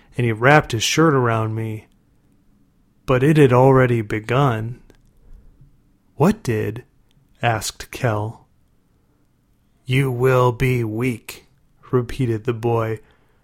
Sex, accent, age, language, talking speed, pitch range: male, American, 30-49, English, 105 wpm, 115-140 Hz